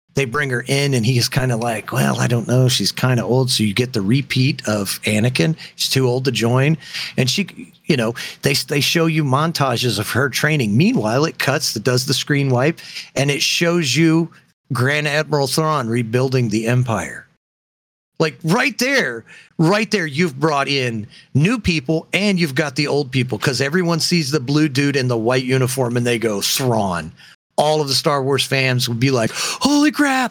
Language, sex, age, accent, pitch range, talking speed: English, male, 40-59, American, 115-155 Hz, 200 wpm